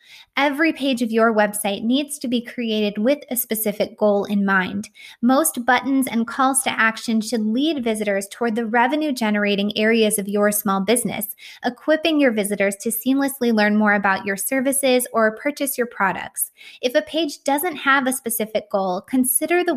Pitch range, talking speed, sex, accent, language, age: 215-265 Hz, 170 wpm, female, American, English, 20-39